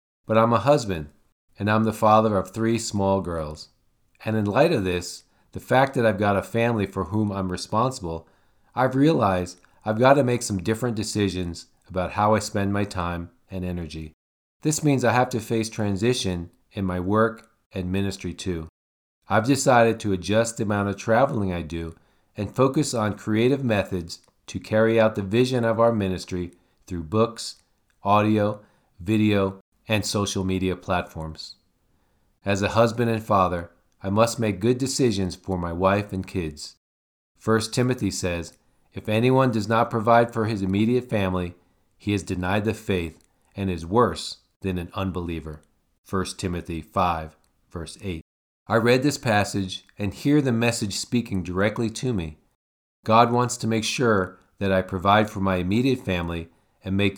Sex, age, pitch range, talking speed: male, 40-59, 90-115 Hz, 165 wpm